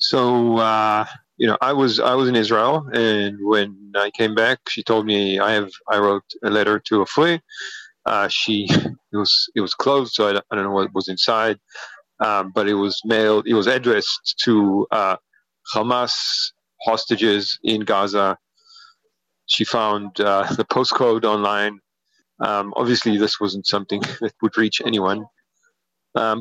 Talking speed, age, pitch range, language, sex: 165 wpm, 40-59, 100-120 Hz, English, male